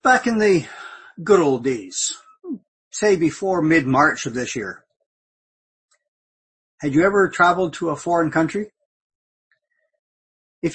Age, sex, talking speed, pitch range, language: 50-69, male, 115 wpm, 140-185 Hz, English